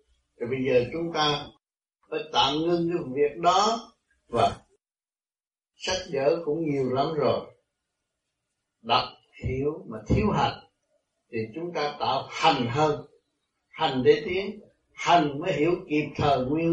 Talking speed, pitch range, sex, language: 135 wpm, 125-170 Hz, male, Vietnamese